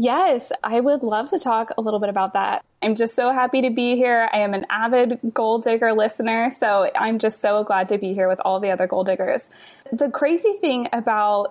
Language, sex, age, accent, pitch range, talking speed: English, female, 20-39, American, 190-235 Hz, 225 wpm